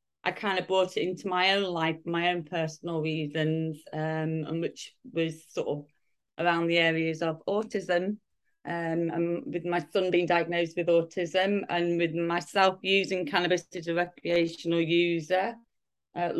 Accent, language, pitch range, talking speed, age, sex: British, English, 165-190 Hz, 155 wpm, 30-49, female